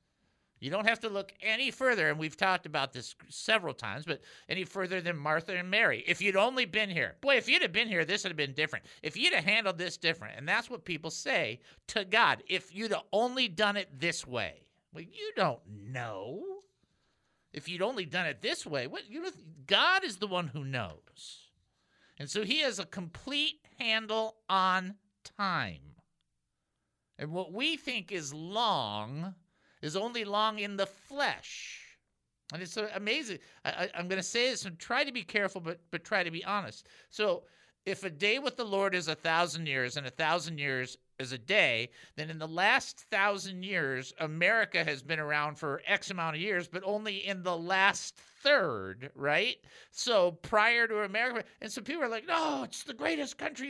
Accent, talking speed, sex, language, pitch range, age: American, 195 wpm, male, English, 155-220 Hz, 50-69